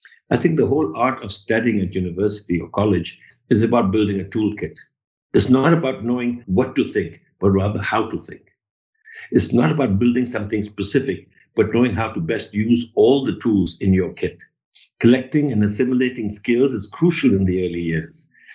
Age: 60-79